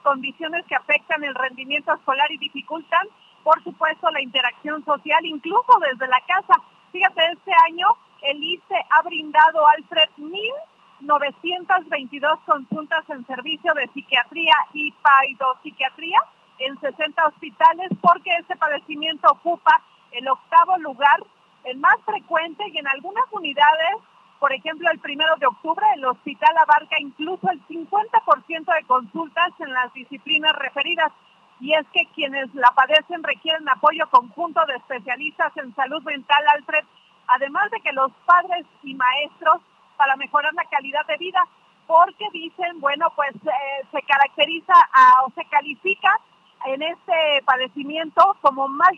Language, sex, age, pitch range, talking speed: Spanish, female, 40-59, 275-330 Hz, 135 wpm